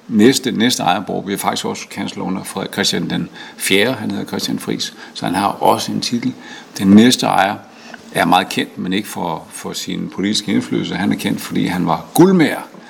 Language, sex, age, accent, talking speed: Danish, male, 60-79, native, 200 wpm